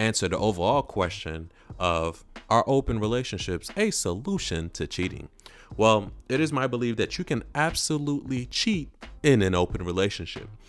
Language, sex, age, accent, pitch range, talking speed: English, male, 30-49, American, 90-115 Hz, 145 wpm